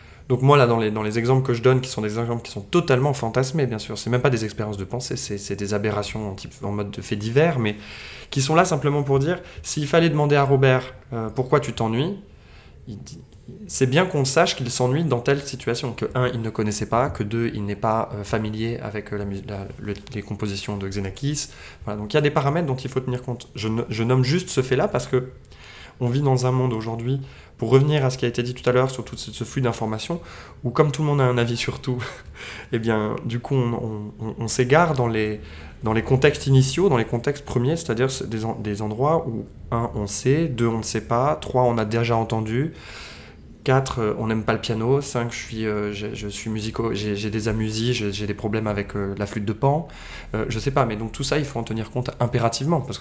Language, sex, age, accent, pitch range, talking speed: French, male, 20-39, French, 110-130 Hz, 245 wpm